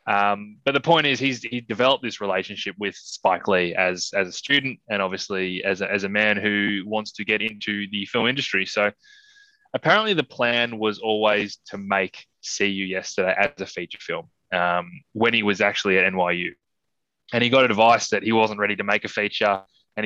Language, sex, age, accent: English, male, 20-39, Australian